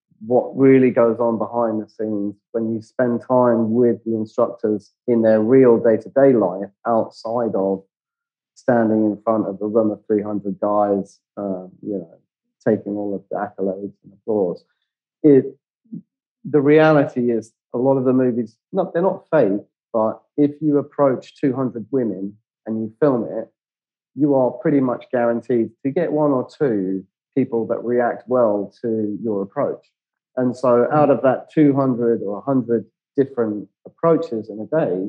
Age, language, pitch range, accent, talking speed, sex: 30-49, English, 110-130 Hz, British, 160 wpm, male